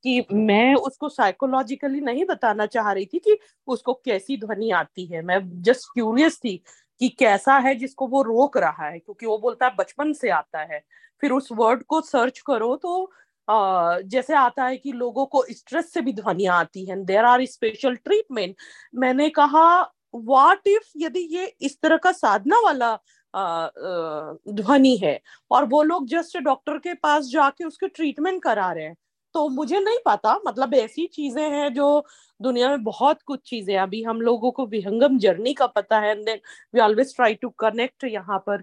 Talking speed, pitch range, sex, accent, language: 175 wpm, 215-290 Hz, female, native, Hindi